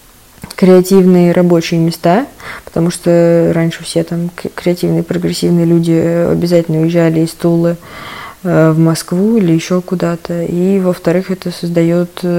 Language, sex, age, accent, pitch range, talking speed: Russian, female, 20-39, native, 170-195 Hz, 120 wpm